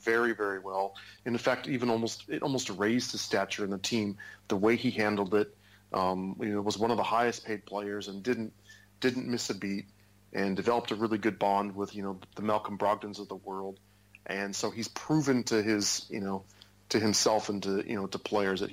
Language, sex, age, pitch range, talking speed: English, male, 40-59, 100-115 Hz, 215 wpm